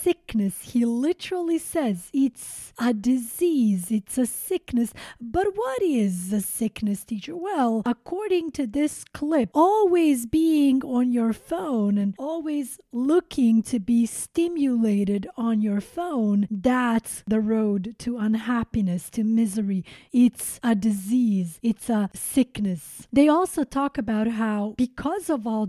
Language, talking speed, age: English, 130 wpm, 30-49